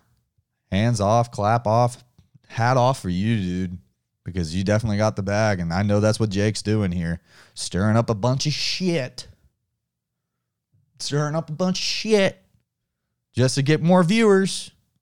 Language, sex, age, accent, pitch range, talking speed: English, male, 30-49, American, 90-125 Hz, 160 wpm